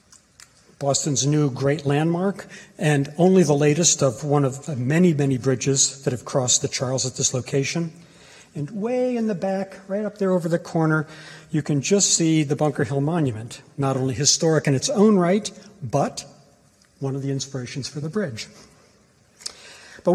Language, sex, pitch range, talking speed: English, male, 135-165 Hz, 175 wpm